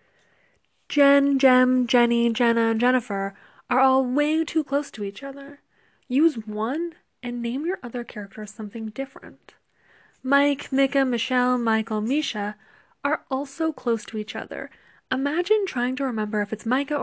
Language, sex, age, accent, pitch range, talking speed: English, female, 20-39, American, 225-285 Hz, 145 wpm